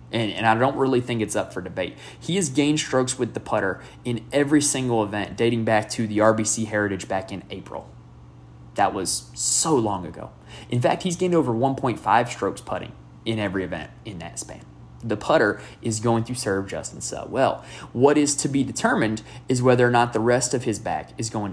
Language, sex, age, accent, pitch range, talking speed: English, male, 20-39, American, 105-130 Hz, 205 wpm